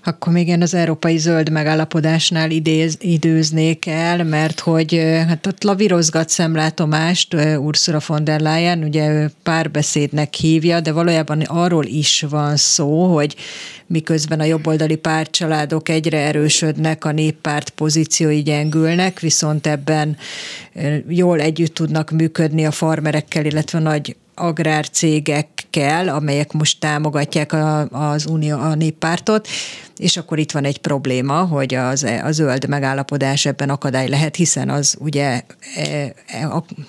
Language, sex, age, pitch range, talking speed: Hungarian, female, 30-49, 150-170 Hz, 125 wpm